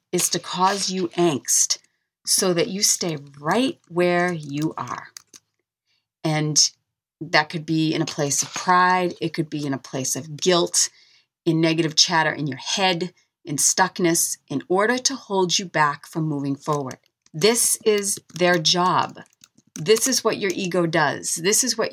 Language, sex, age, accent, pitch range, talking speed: English, female, 40-59, American, 160-190 Hz, 165 wpm